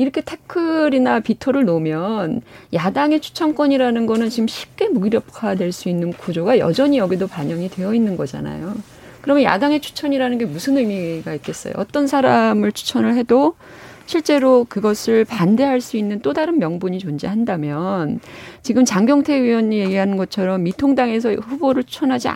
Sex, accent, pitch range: female, native, 195-275 Hz